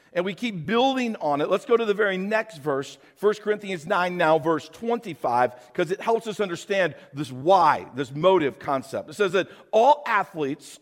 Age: 50-69